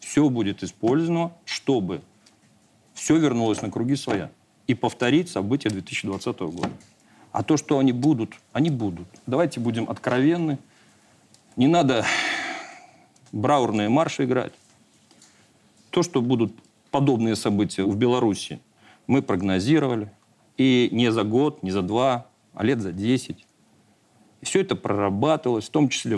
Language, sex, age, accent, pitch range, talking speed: Russian, male, 50-69, native, 110-145 Hz, 125 wpm